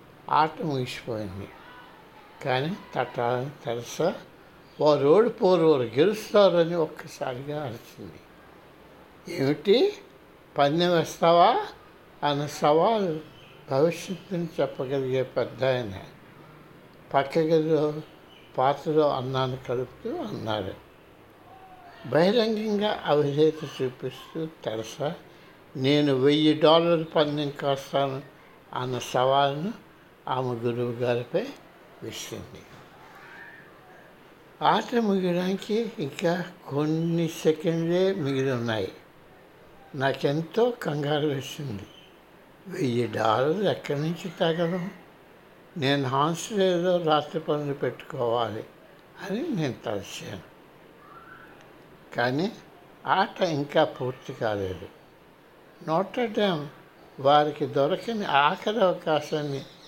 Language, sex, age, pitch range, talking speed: Telugu, male, 60-79, 135-175 Hz, 75 wpm